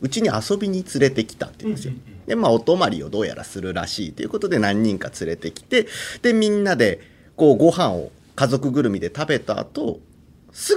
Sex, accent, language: male, native, Japanese